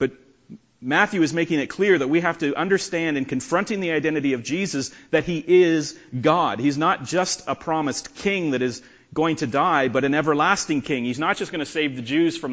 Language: English